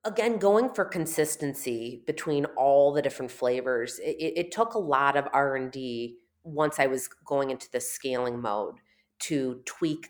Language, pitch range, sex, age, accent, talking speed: English, 125-160 Hz, female, 30-49, American, 160 wpm